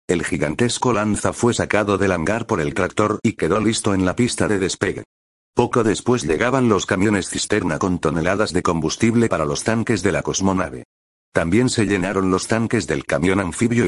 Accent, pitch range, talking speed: Spanish, 90-115 Hz, 180 wpm